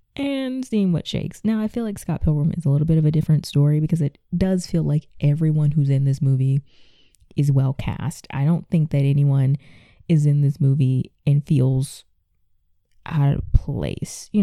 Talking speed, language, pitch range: 190 wpm, English, 145-190 Hz